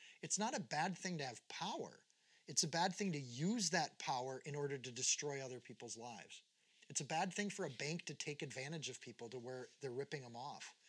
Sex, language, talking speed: male, English, 225 wpm